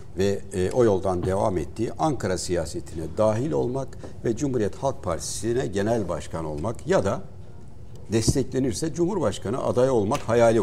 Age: 60-79